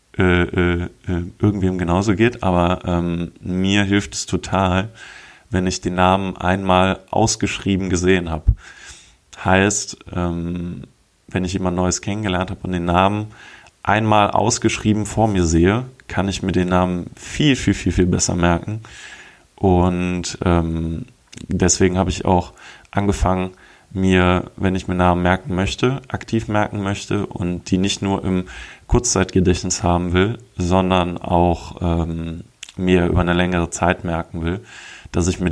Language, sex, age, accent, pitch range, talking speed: German, male, 20-39, German, 90-100 Hz, 145 wpm